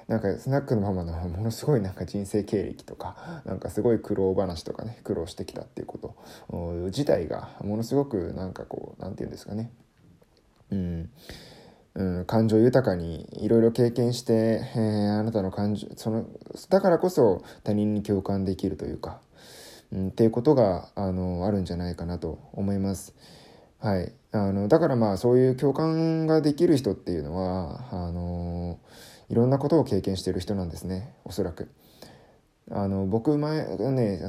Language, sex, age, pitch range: Japanese, male, 20-39, 90-120 Hz